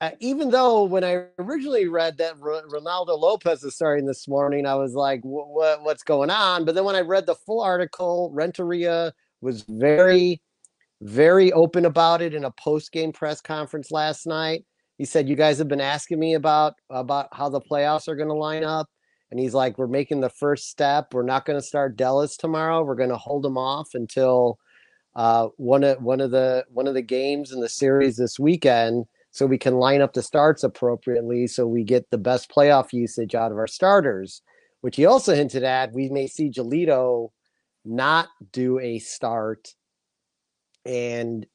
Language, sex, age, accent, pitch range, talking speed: English, male, 30-49, American, 125-160 Hz, 195 wpm